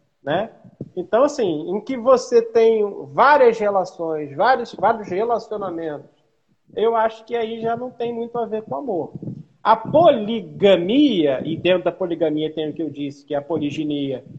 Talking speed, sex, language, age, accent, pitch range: 165 wpm, male, Portuguese, 40-59, Brazilian, 160-235 Hz